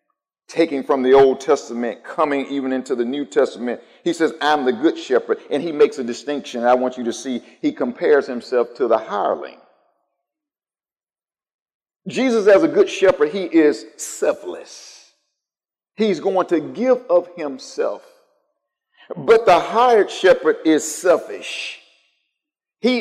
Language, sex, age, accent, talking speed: English, male, 50-69, American, 140 wpm